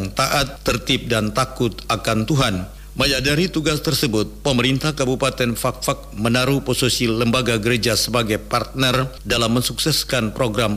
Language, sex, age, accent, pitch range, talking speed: Indonesian, male, 50-69, native, 115-135 Hz, 125 wpm